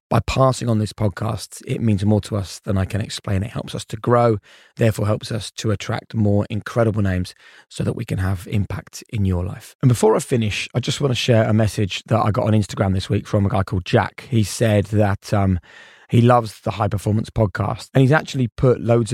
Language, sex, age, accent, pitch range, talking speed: English, male, 20-39, British, 100-115 Hz, 230 wpm